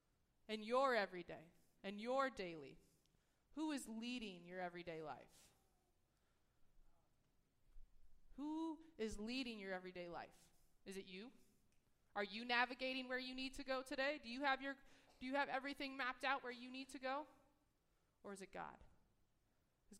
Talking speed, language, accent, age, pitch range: 150 wpm, English, American, 20-39, 185-245 Hz